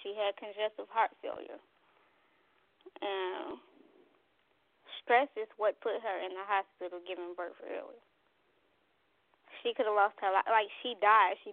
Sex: female